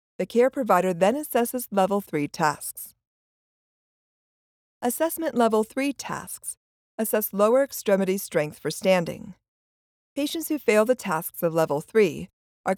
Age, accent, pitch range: 40-59, American, 175-240 Hz